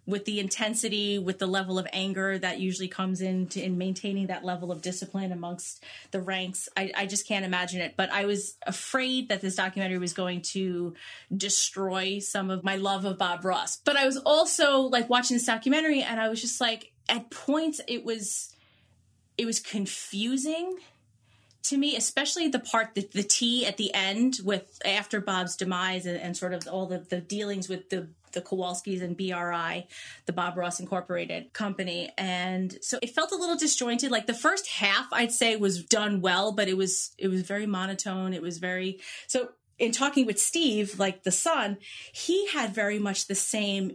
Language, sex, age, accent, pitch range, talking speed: English, female, 30-49, American, 185-230 Hz, 190 wpm